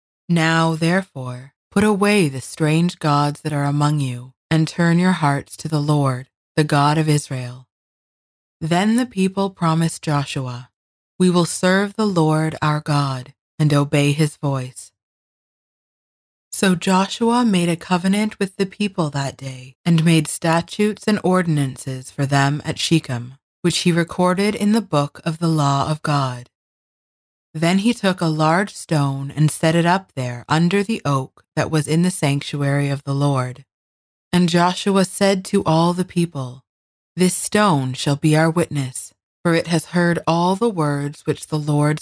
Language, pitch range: English, 135-180 Hz